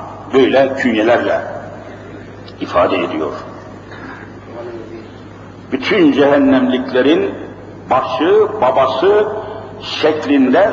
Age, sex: 50-69, male